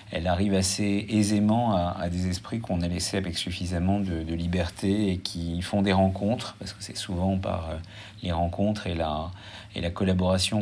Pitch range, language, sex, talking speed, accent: 85-105 Hz, French, male, 190 wpm, French